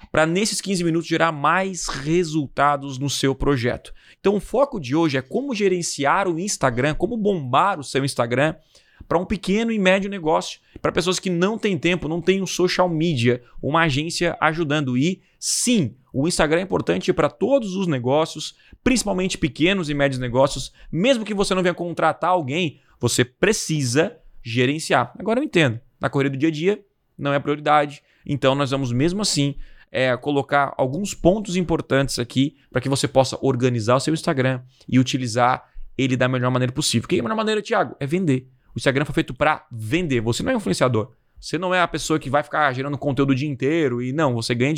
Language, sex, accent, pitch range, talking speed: Portuguese, male, Brazilian, 135-180 Hz, 190 wpm